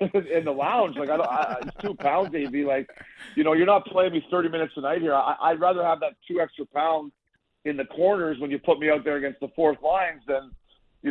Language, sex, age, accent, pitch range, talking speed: English, male, 50-69, American, 130-155 Hz, 255 wpm